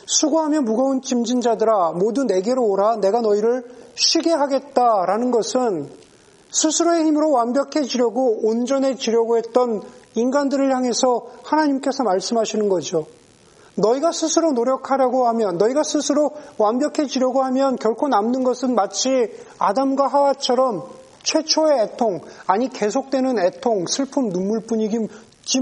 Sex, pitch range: male, 205-270 Hz